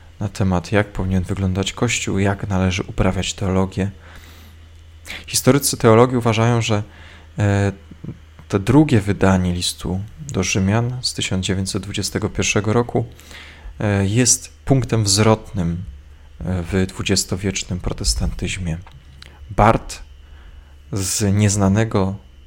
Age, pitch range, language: 20-39, 85-105 Hz, Polish